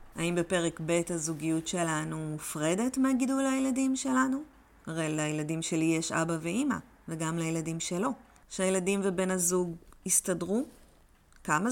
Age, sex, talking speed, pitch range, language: 30-49, female, 120 wpm, 160-210 Hz, Hebrew